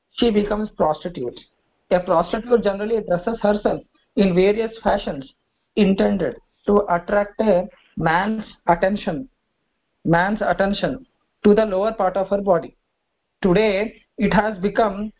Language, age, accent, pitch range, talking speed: English, 50-69, Indian, 180-220 Hz, 120 wpm